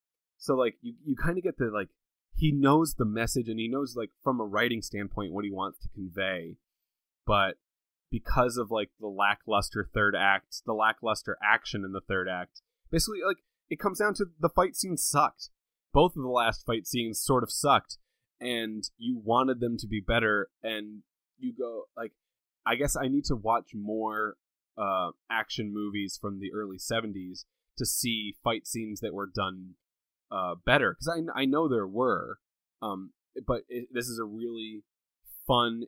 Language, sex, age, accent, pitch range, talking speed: English, male, 20-39, American, 100-125 Hz, 180 wpm